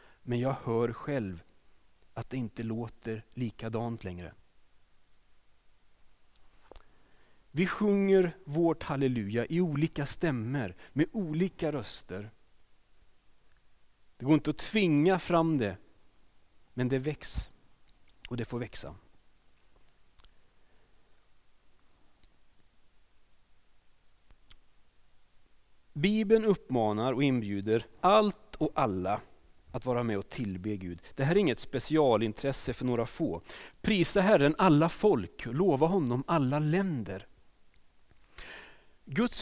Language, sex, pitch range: Swedish, male, 100-160 Hz